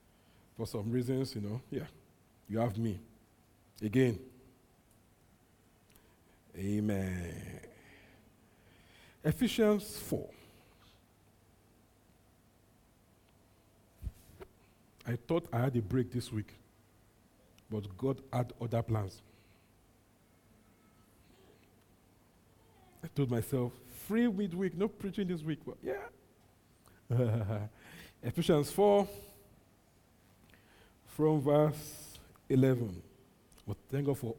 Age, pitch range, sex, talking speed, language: 50-69, 105-150 Hz, male, 80 wpm, English